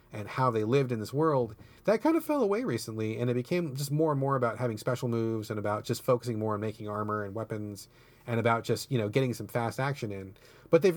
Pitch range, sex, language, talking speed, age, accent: 110-140 Hz, male, English, 250 wpm, 30-49, American